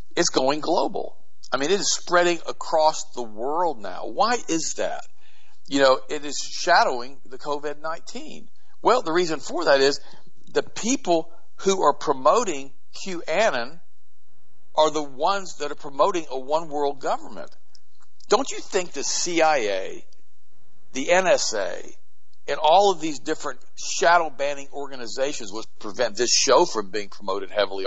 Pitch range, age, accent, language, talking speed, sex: 135-195 Hz, 50-69, American, English, 140 wpm, male